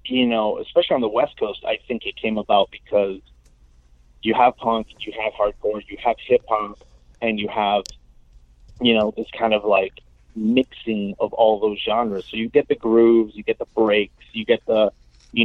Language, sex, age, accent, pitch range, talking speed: English, male, 30-49, American, 95-115 Hz, 190 wpm